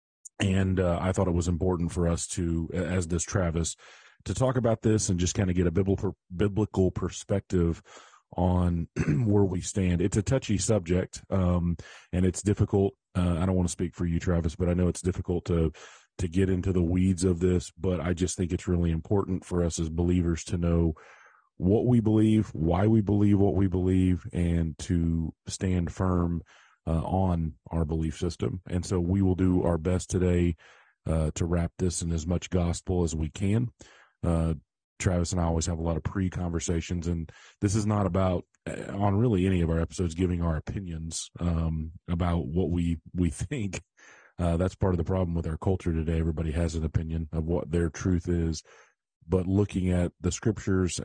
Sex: male